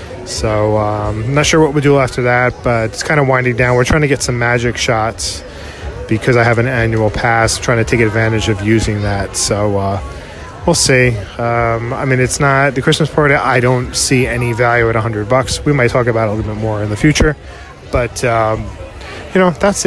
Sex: male